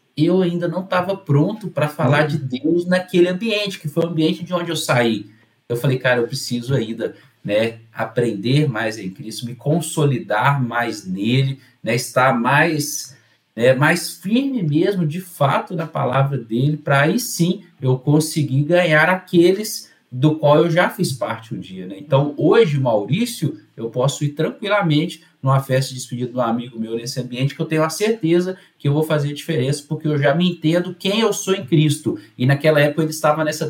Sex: male